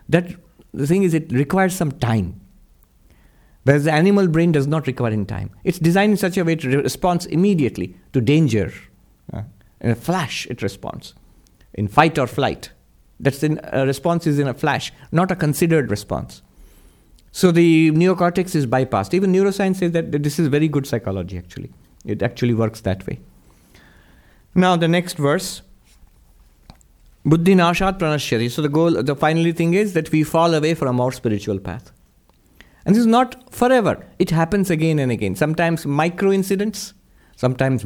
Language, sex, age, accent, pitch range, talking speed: English, male, 50-69, Indian, 120-170 Hz, 160 wpm